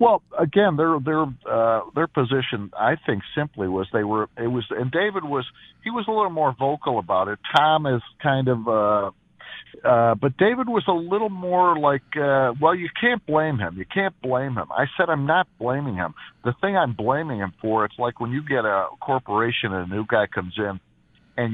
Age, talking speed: 50-69, 210 wpm